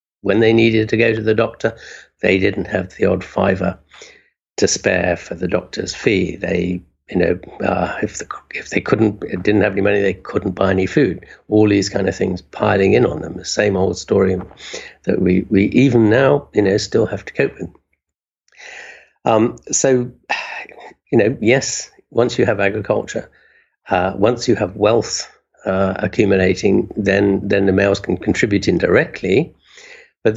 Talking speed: 170 wpm